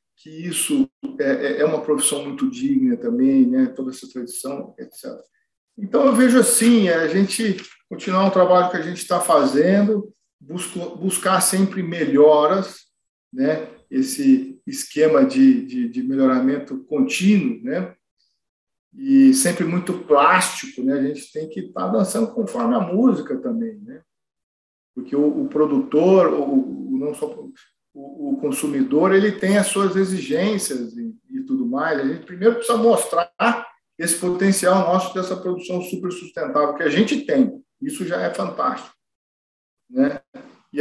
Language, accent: Portuguese, Brazilian